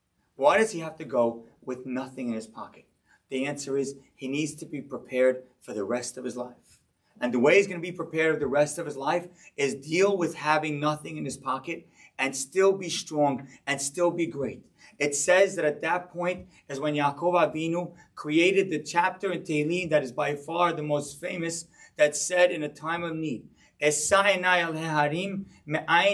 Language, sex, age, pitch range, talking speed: English, male, 30-49, 150-215 Hz, 195 wpm